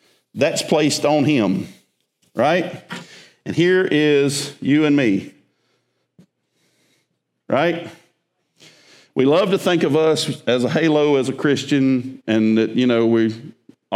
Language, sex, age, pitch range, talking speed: English, male, 50-69, 130-170 Hz, 125 wpm